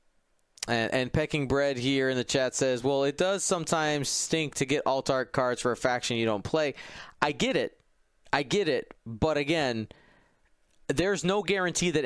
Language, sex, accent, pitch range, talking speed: English, male, American, 120-155 Hz, 185 wpm